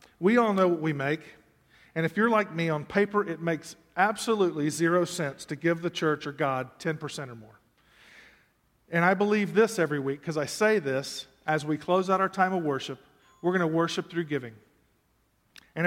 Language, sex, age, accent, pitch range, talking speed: English, male, 50-69, American, 150-185 Hz, 195 wpm